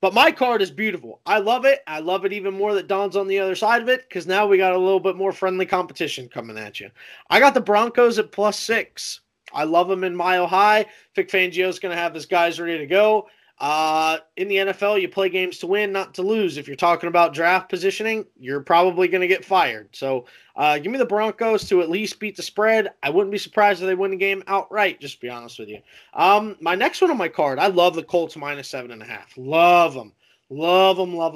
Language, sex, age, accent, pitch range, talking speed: English, male, 20-39, American, 160-200 Hz, 245 wpm